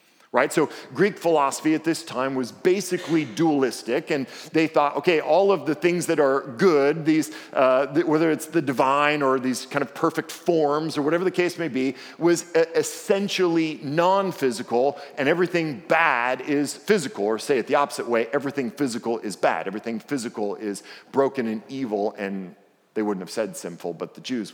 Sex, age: male, 50-69